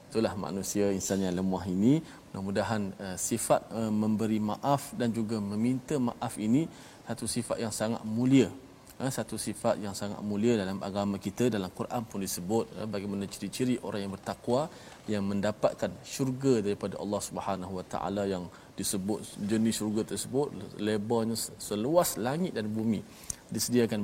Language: Malayalam